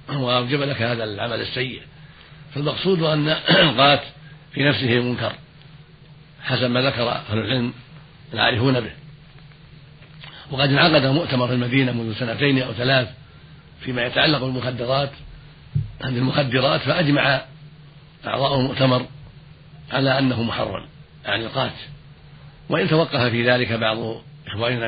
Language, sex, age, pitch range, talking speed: Arabic, male, 60-79, 125-150 Hz, 110 wpm